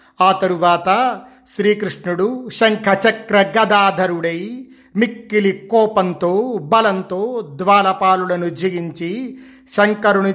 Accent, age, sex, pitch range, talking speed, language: native, 50-69, male, 175-210 Hz, 70 wpm, Telugu